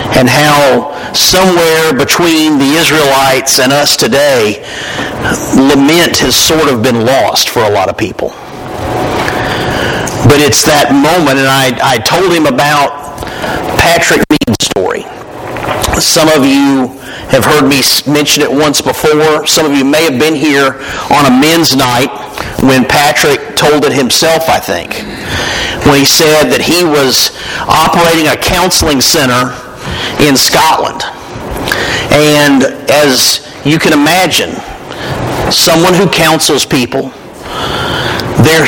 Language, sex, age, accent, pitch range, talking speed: English, male, 50-69, American, 135-165 Hz, 130 wpm